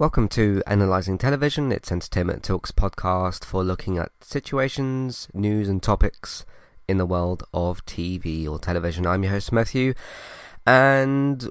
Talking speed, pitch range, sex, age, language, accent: 140 wpm, 95-120 Hz, male, 20-39, English, British